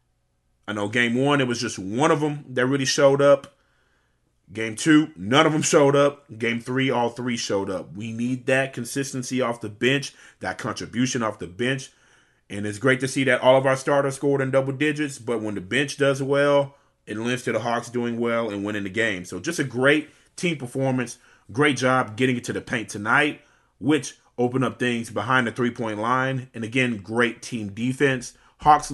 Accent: American